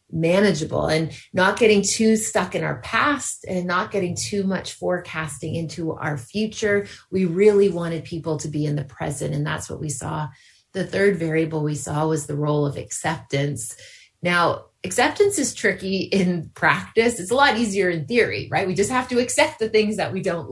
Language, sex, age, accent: English, female, 30-49, American